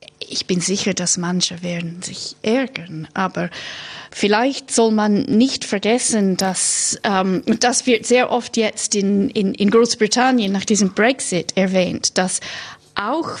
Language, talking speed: German, 140 wpm